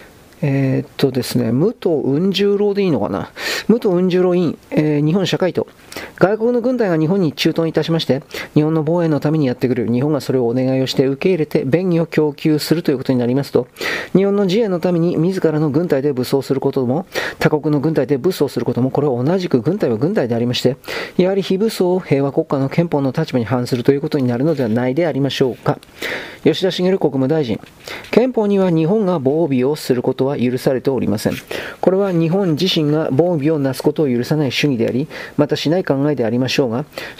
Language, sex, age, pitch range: Japanese, male, 40-59, 135-175 Hz